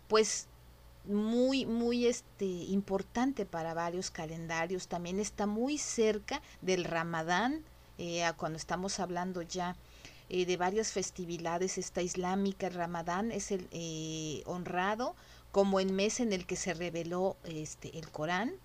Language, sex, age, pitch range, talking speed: Spanish, female, 40-59, 170-205 Hz, 135 wpm